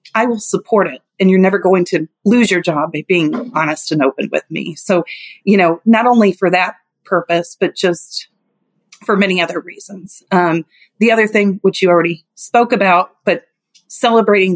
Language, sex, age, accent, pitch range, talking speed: English, female, 30-49, American, 175-205 Hz, 180 wpm